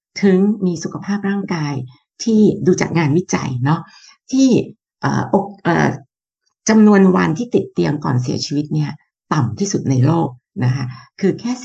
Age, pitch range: 60-79, 135-190 Hz